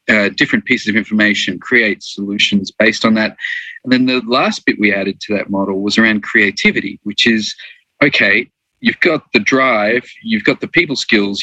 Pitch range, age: 100-125 Hz, 40-59